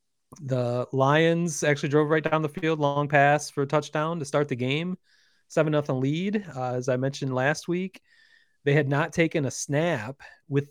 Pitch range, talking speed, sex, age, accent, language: 120-155 Hz, 180 wpm, male, 30-49, American, English